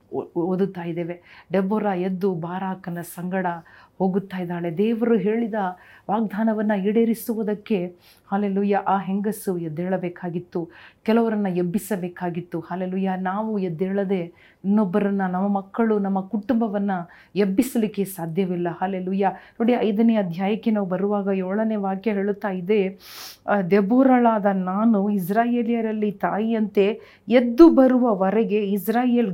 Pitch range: 185-220 Hz